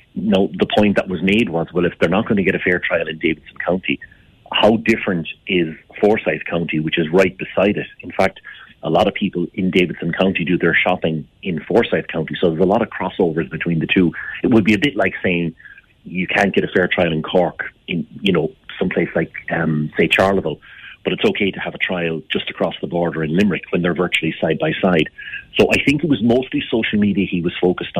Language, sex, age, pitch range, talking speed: English, male, 40-59, 80-95 Hz, 230 wpm